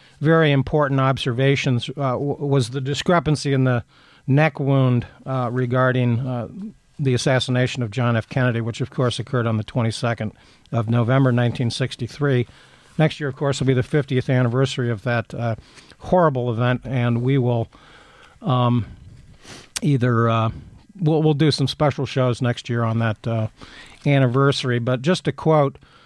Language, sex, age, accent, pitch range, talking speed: English, male, 50-69, American, 120-140 Hz, 160 wpm